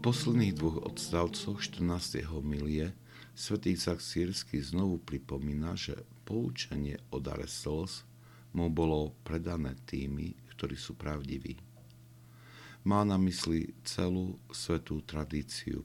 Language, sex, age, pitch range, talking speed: Slovak, male, 60-79, 70-90 Hz, 105 wpm